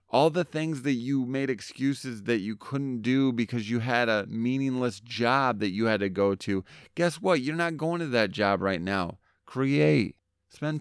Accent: American